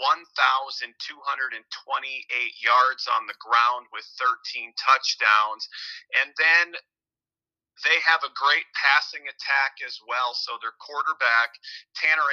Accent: American